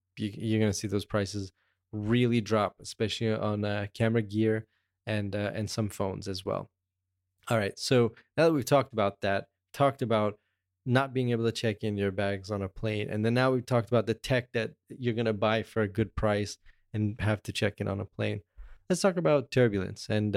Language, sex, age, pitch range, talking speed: English, male, 20-39, 100-115 Hz, 210 wpm